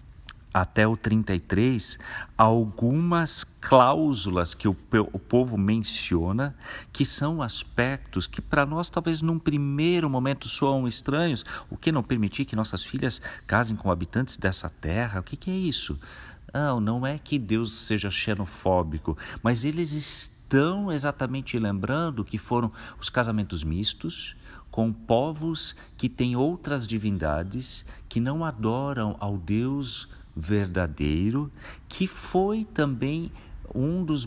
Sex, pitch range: male, 100-145 Hz